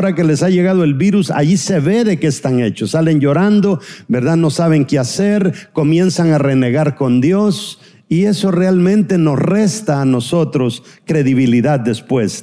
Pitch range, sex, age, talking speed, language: 140-195 Hz, male, 50-69, 170 wpm, Spanish